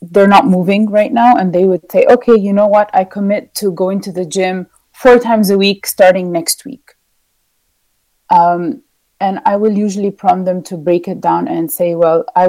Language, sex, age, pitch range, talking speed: English, female, 30-49, 175-225 Hz, 200 wpm